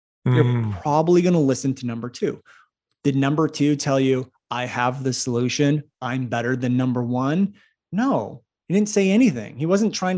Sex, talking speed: male, 175 wpm